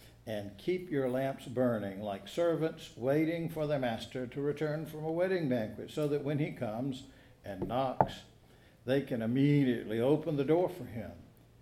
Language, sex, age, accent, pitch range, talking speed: English, male, 60-79, American, 120-155 Hz, 165 wpm